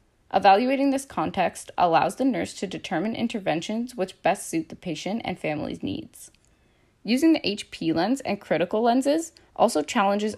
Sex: female